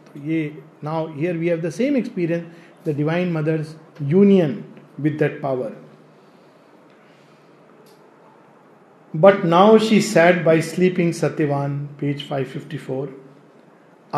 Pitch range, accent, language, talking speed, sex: 150-185 Hz, native, Hindi, 100 wpm, male